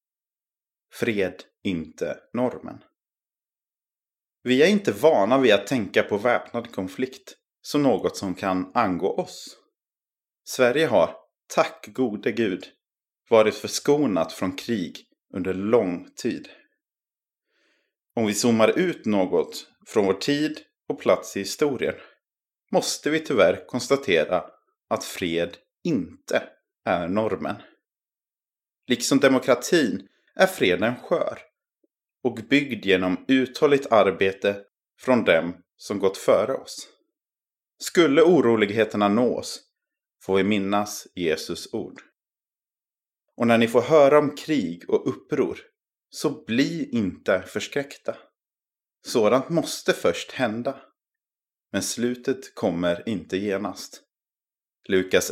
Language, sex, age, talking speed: Swedish, male, 30-49, 105 wpm